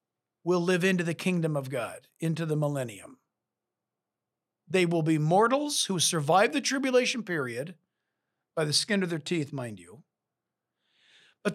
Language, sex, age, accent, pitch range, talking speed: English, male, 50-69, American, 165-215 Hz, 145 wpm